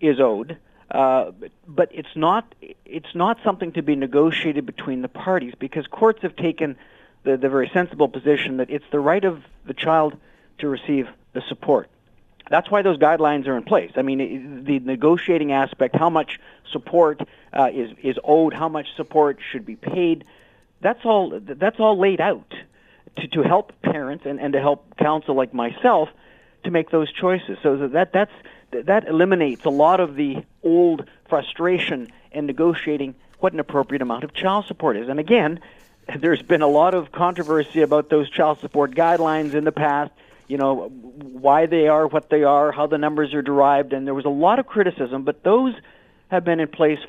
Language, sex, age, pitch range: English, male, 50-69, 140-180 Hz